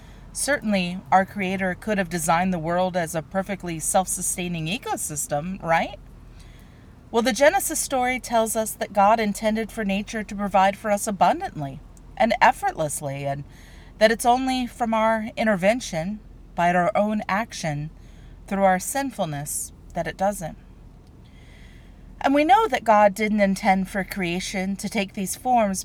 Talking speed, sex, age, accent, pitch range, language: 145 wpm, female, 40-59, American, 170-230 Hz, English